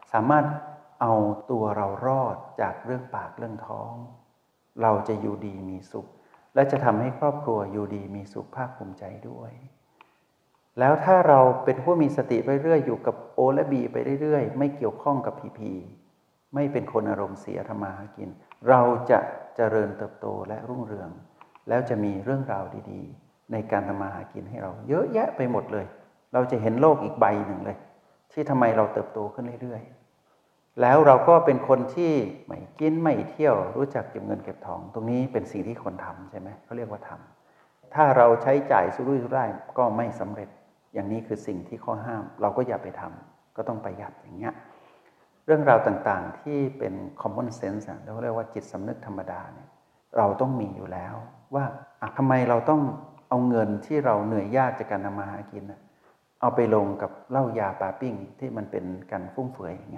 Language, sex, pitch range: Thai, male, 105-135 Hz